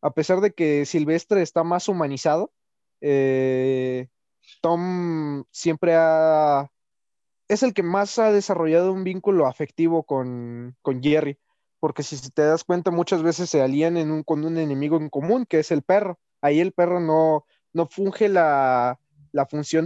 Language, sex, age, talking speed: Spanish, male, 20-39, 160 wpm